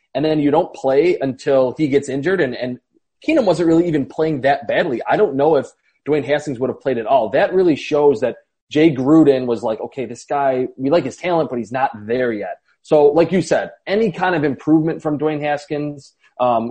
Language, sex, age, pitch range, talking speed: English, male, 20-39, 125-150 Hz, 220 wpm